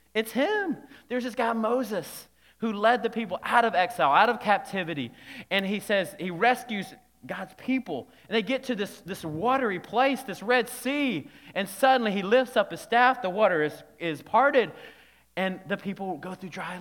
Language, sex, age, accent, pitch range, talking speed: English, male, 30-49, American, 150-220 Hz, 185 wpm